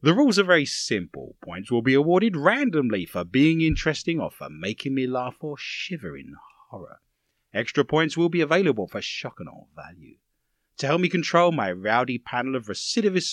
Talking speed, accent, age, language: 185 wpm, British, 30-49, English